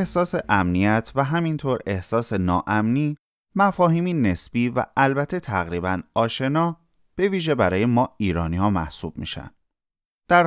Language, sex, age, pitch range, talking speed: Persian, male, 30-49, 95-155 Hz, 120 wpm